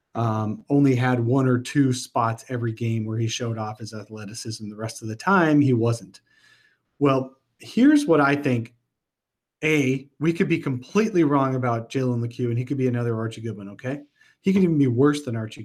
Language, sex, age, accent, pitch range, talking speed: English, male, 40-59, American, 115-135 Hz, 195 wpm